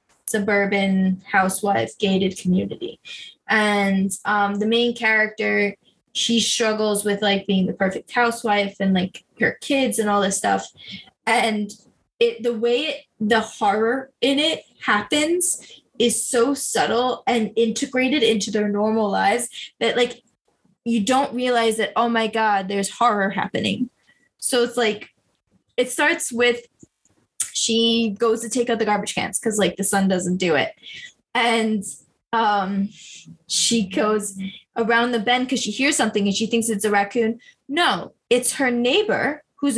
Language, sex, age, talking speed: English, female, 10-29, 150 wpm